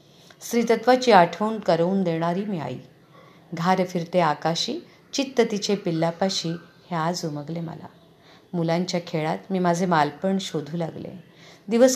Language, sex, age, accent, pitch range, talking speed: Marathi, female, 50-69, native, 155-185 Hz, 120 wpm